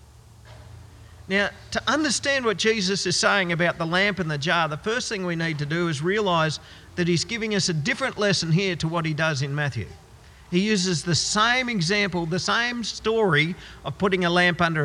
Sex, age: male, 50-69